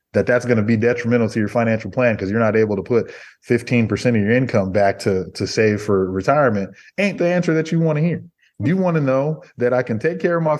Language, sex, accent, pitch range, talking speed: English, male, American, 100-125 Hz, 255 wpm